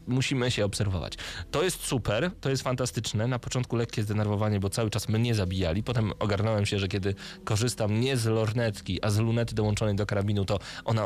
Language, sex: Polish, male